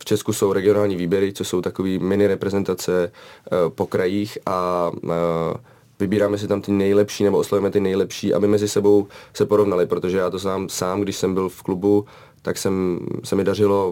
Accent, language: native, Czech